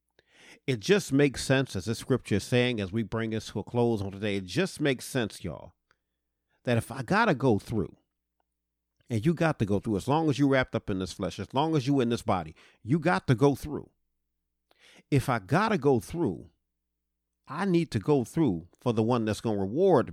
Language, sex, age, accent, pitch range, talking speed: English, male, 50-69, American, 90-135 Hz, 225 wpm